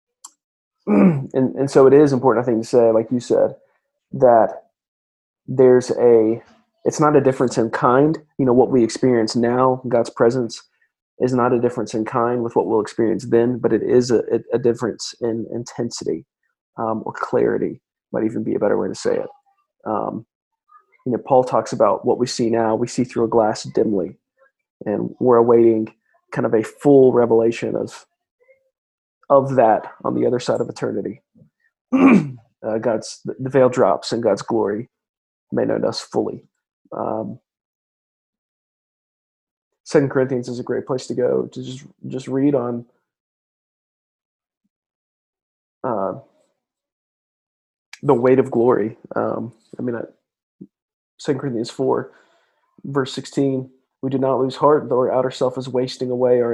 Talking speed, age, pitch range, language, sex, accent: 155 wpm, 30-49, 115-135 Hz, English, male, American